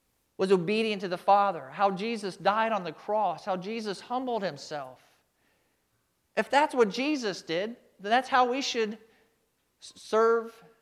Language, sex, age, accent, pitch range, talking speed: English, male, 40-59, American, 180-225 Hz, 145 wpm